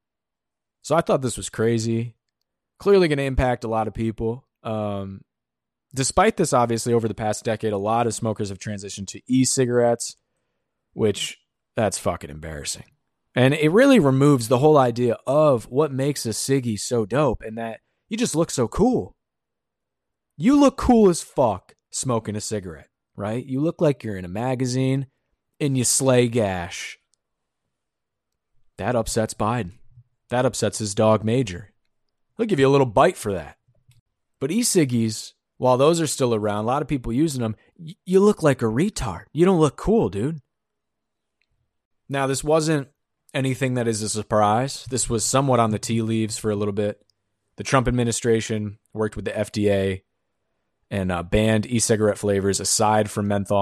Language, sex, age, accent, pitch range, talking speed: English, male, 20-39, American, 105-135 Hz, 165 wpm